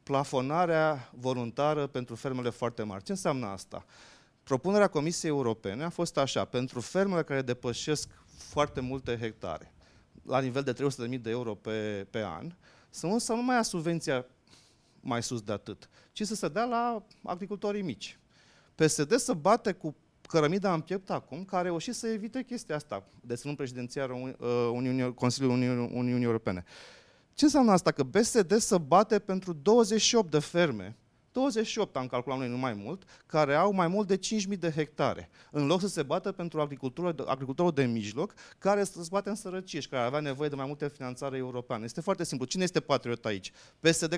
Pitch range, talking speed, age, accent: 125-185 Hz, 170 wpm, 30-49, native